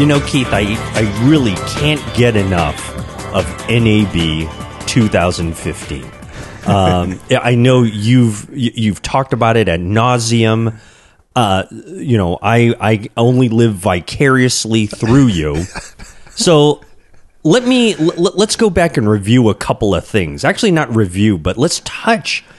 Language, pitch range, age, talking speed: English, 95-130 Hz, 30-49, 135 wpm